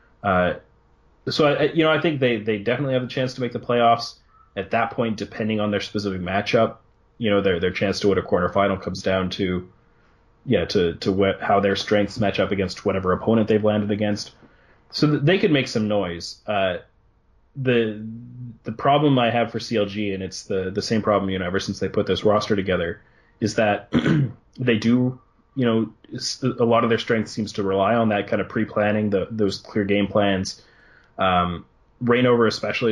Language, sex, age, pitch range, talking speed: English, male, 30-49, 100-115 Hz, 200 wpm